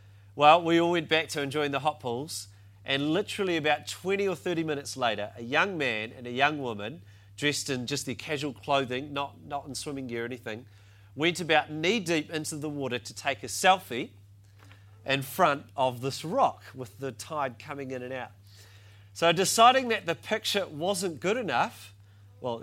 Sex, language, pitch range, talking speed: male, English, 105-165 Hz, 180 wpm